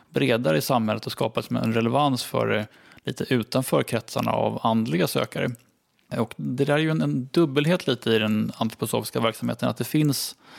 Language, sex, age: English, male, 20-39